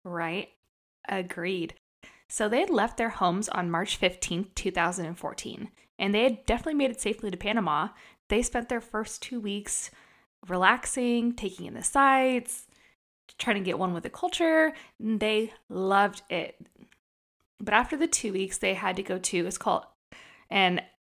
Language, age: English, 20-39